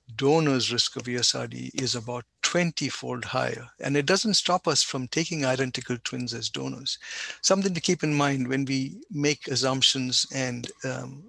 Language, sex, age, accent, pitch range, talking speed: English, male, 60-79, Indian, 130-150 Hz, 165 wpm